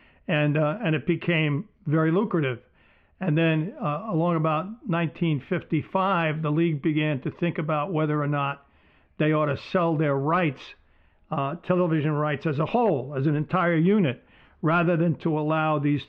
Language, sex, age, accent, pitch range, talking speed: English, male, 50-69, American, 145-170 Hz, 160 wpm